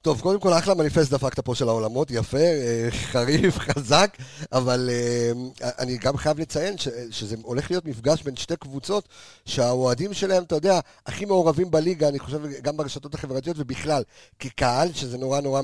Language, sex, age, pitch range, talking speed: Hebrew, male, 50-69, 115-155 Hz, 155 wpm